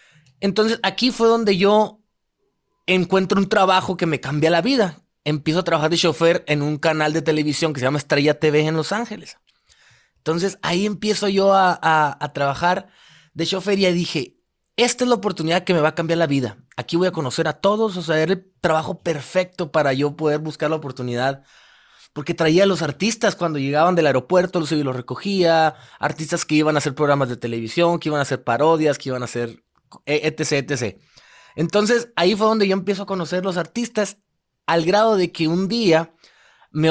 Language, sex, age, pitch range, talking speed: Spanish, male, 30-49, 145-185 Hz, 195 wpm